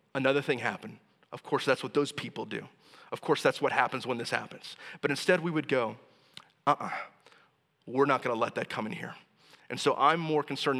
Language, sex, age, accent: English, male, 30-49, American